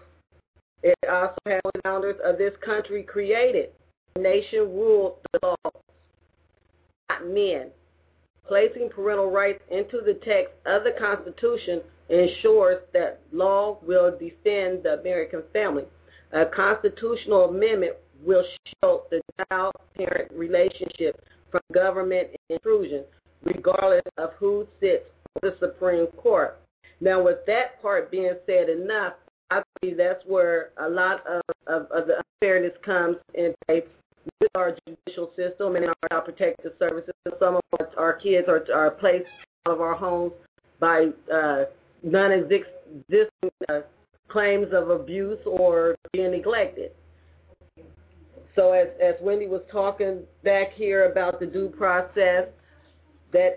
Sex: female